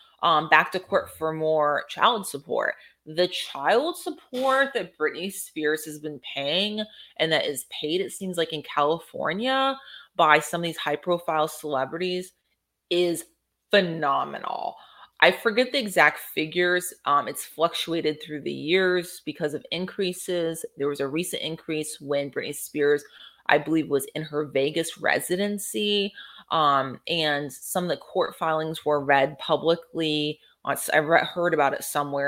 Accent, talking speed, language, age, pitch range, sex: American, 145 wpm, English, 30-49, 150-200 Hz, female